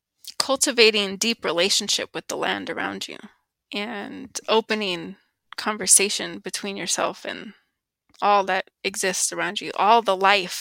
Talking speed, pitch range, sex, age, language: 125 wpm, 195-225 Hz, female, 20-39, English